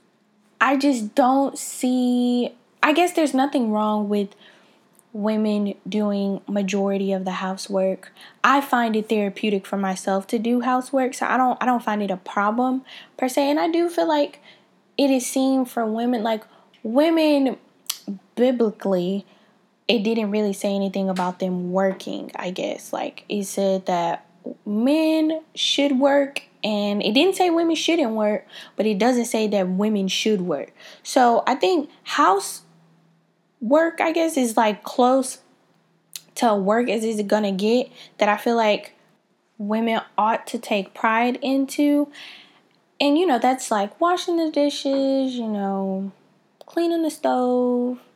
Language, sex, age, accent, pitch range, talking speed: English, female, 10-29, American, 205-275 Hz, 150 wpm